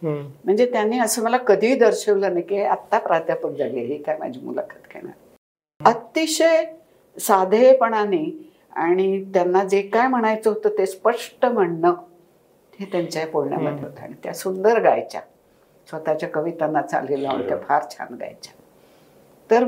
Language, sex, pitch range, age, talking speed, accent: Marathi, female, 175-250 Hz, 60-79, 60 wpm, native